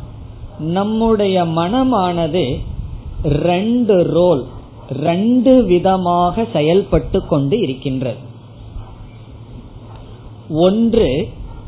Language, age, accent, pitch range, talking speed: Tamil, 20-39, native, 115-190 Hz, 50 wpm